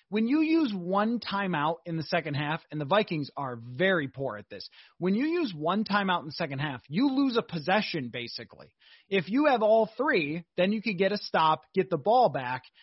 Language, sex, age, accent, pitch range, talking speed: English, male, 30-49, American, 160-215 Hz, 215 wpm